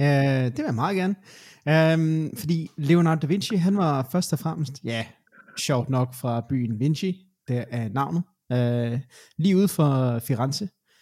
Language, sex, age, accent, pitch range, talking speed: Danish, male, 20-39, native, 115-150 Hz, 145 wpm